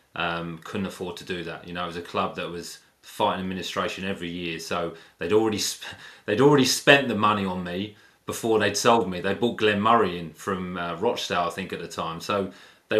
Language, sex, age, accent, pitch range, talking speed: English, male, 30-49, British, 90-105 Hz, 220 wpm